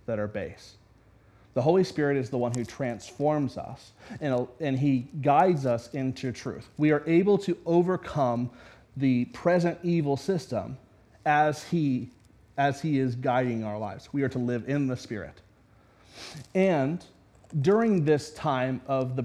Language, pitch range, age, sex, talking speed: English, 125-165 Hz, 30-49, male, 155 wpm